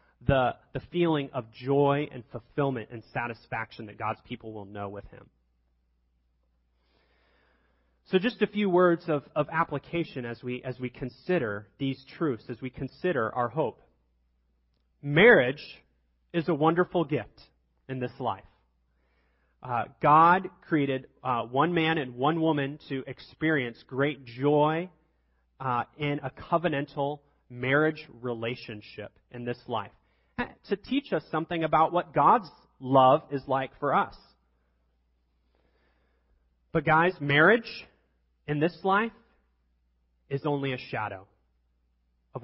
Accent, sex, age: American, male, 30-49